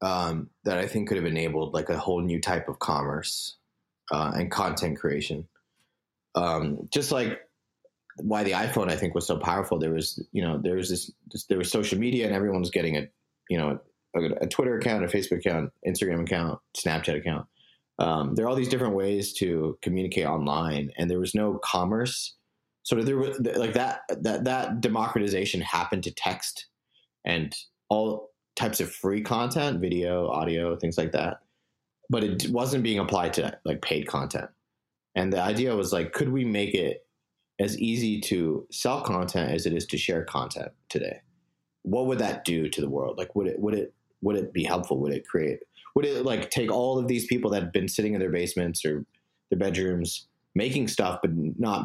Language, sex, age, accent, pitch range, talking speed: English, male, 30-49, American, 85-110 Hz, 195 wpm